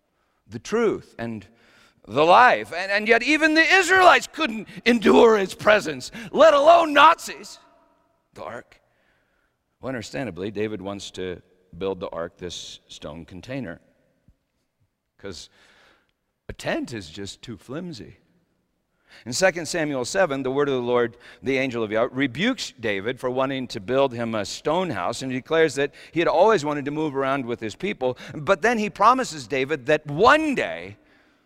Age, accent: 50-69, American